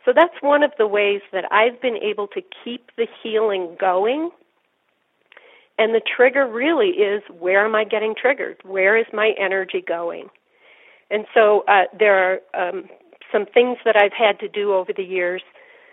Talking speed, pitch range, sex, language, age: 175 wpm, 190-270 Hz, female, English, 40-59